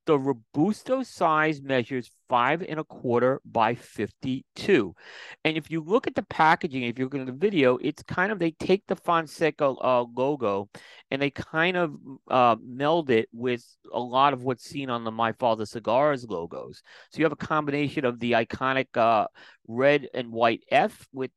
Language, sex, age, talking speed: English, male, 40-59, 185 wpm